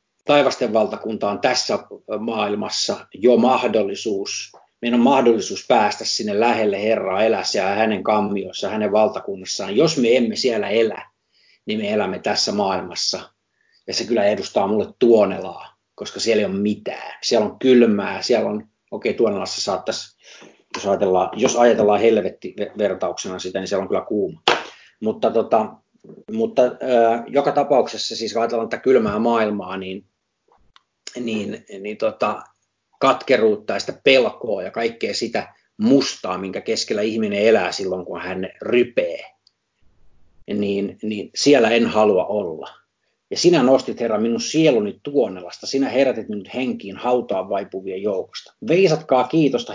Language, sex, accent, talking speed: Finnish, male, native, 135 wpm